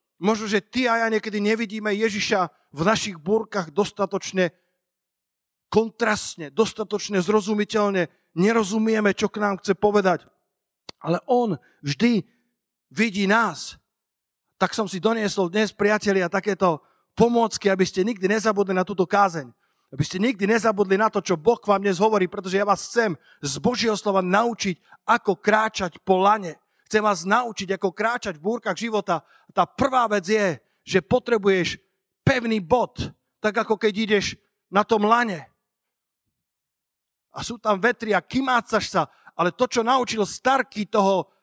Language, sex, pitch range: Slovak, male, 195-230 Hz